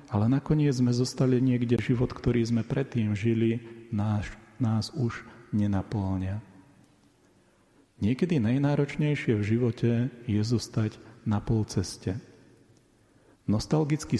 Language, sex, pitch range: Slovak, male, 110-130 Hz